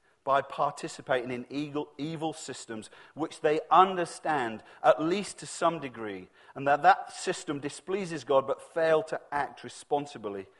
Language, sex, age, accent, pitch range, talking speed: English, male, 40-59, British, 125-155 Hz, 140 wpm